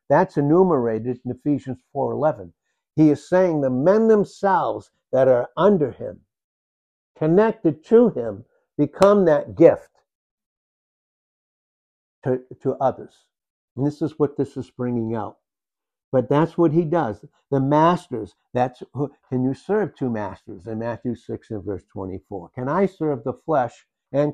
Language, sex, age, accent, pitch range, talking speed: English, male, 60-79, American, 115-150 Hz, 140 wpm